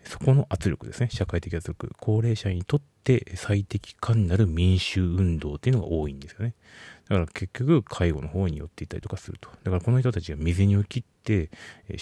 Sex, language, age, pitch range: male, Japanese, 40-59, 85-105 Hz